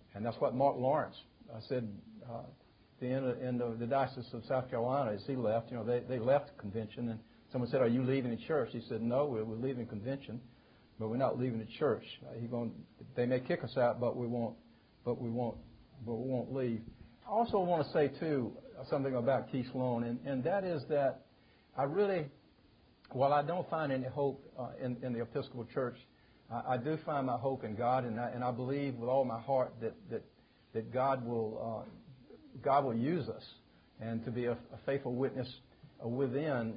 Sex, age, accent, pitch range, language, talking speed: male, 60-79, American, 115-135 Hz, English, 210 wpm